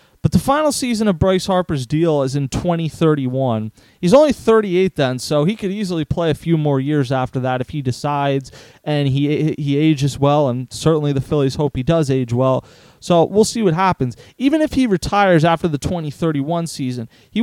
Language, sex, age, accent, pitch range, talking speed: English, male, 30-49, American, 145-185 Hz, 195 wpm